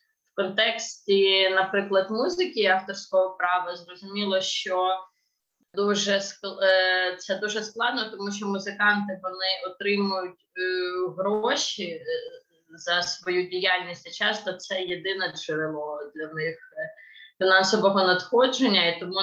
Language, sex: Ukrainian, female